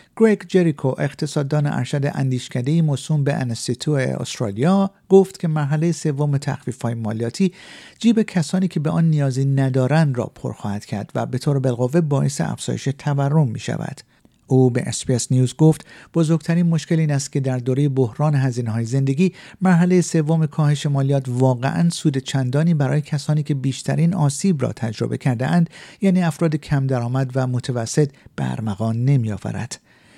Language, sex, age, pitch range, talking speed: Persian, male, 50-69, 125-165 Hz, 140 wpm